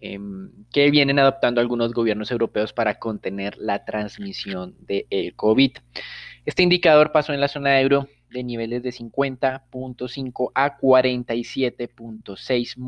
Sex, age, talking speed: male, 20-39, 120 wpm